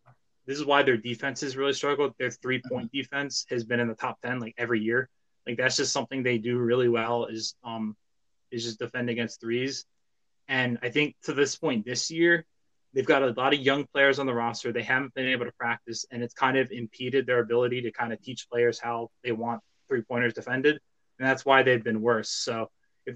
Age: 20-39